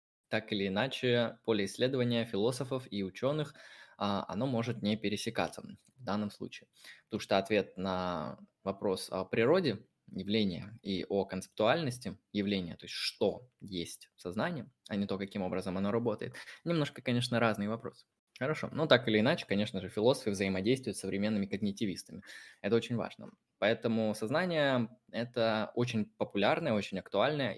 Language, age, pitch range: Russian, 20-39, 100-125 Hz